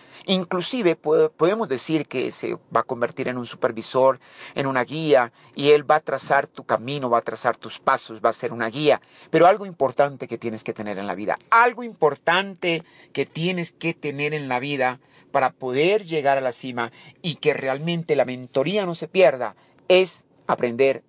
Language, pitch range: Spanish, 130-185 Hz